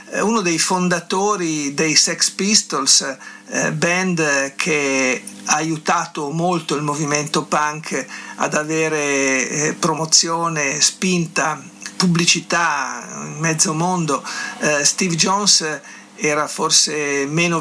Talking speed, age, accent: 90 wpm, 50-69, native